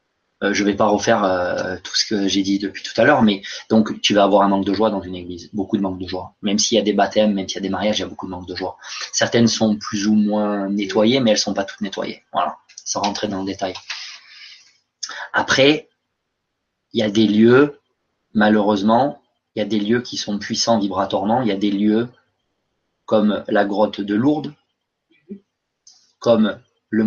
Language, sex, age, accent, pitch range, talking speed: French, male, 20-39, French, 100-115 Hz, 220 wpm